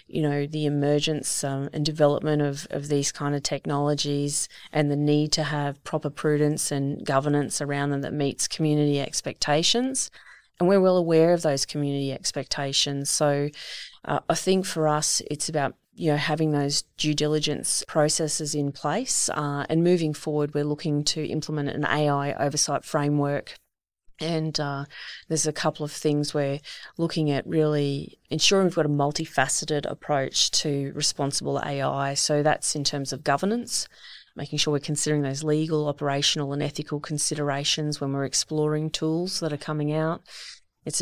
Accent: Australian